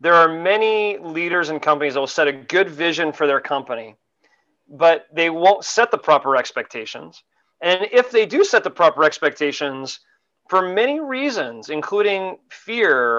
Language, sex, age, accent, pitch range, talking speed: English, male, 30-49, American, 150-185 Hz, 160 wpm